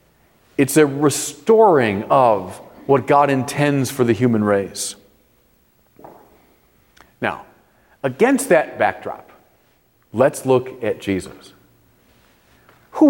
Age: 40-59